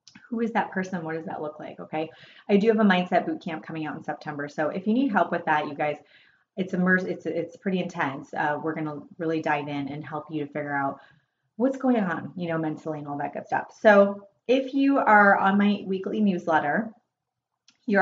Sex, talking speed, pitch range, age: female, 225 wpm, 160-205 Hz, 30-49